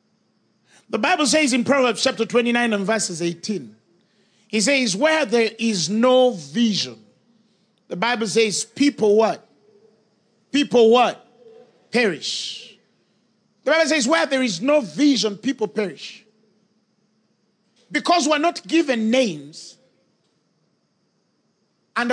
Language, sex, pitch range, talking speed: English, male, 215-285 Hz, 110 wpm